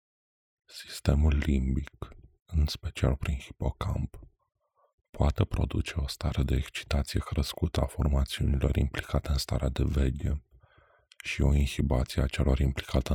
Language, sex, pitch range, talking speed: Romanian, male, 65-80 Hz, 120 wpm